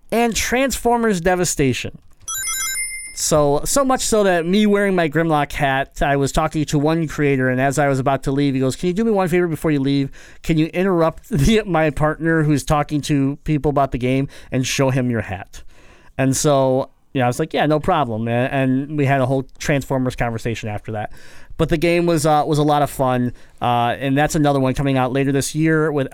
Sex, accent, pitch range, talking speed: male, American, 130-165 Hz, 220 wpm